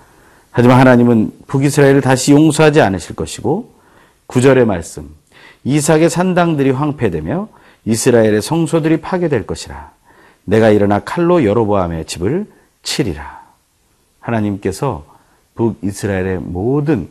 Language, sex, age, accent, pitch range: Korean, male, 40-59, native, 90-145 Hz